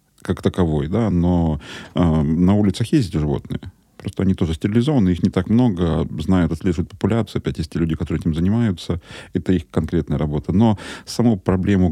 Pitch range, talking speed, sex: 85-105 Hz, 175 wpm, male